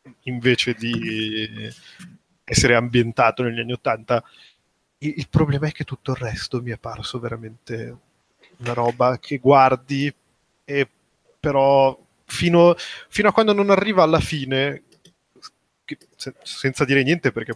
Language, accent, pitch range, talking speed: Italian, native, 120-155 Hz, 125 wpm